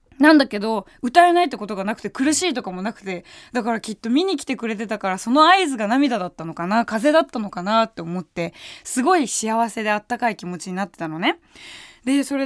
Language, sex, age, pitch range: Japanese, female, 20-39, 200-305 Hz